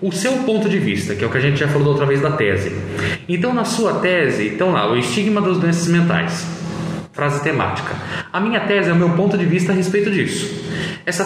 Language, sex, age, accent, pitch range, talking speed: Portuguese, male, 20-39, Brazilian, 135-190 Hz, 230 wpm